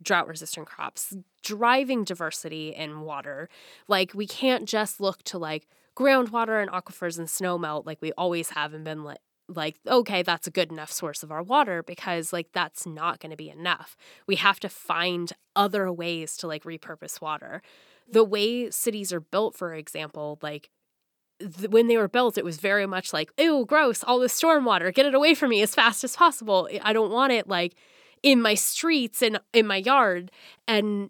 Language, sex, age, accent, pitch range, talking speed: English, female, 10-29, American, 160-215 Hz, 195 wpm